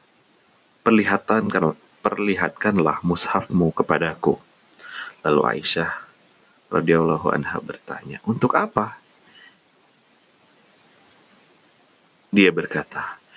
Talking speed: 60 wpm